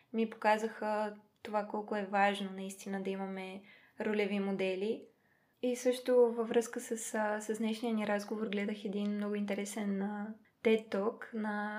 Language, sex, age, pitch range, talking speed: Bulgarian, female, 20-39, 200-225 Hz, 135 wpm